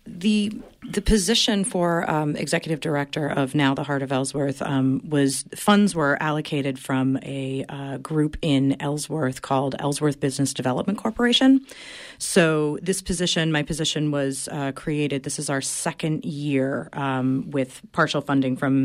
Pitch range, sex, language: 135-155 Hz, female, English